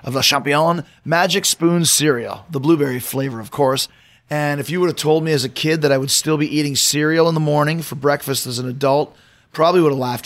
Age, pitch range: 30-49, 135-160 Hz